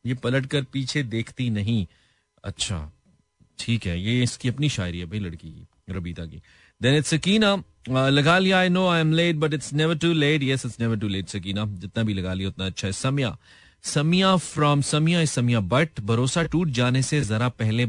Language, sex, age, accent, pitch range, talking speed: Hindi, male, 30-49, native, 100-140 Hz, 185 wpm